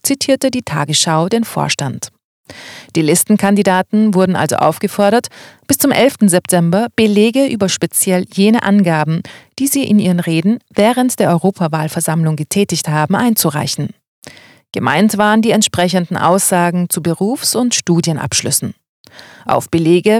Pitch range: 165-225 Hz